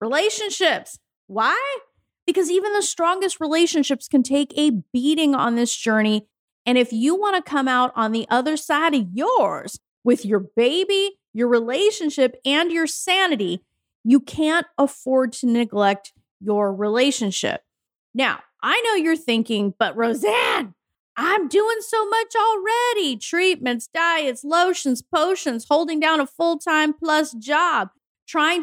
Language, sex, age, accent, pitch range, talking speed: English, female, 30-49, American, 240-355 Hz, 140 wpm